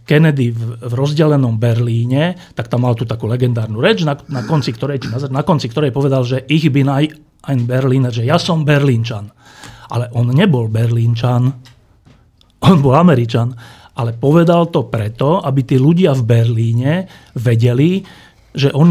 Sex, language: male, Slovak